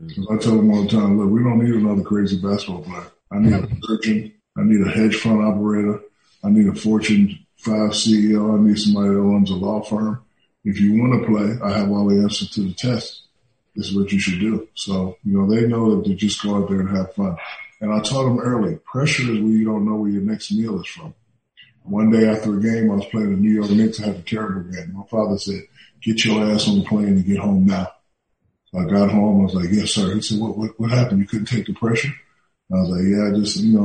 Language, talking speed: English, 260 wpm